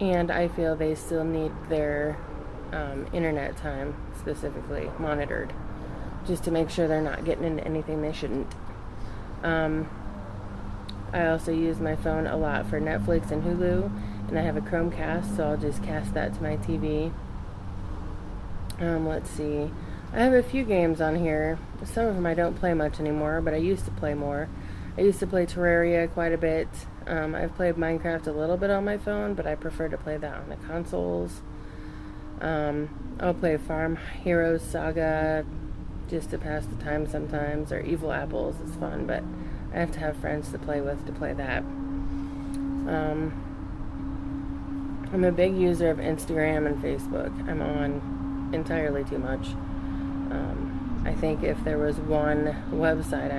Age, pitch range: 20-39, 105-165 Hz